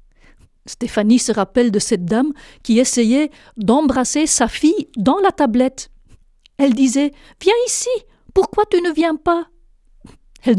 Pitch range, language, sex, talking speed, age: 210-265 Hz, French, female, 135 wpm, 50-69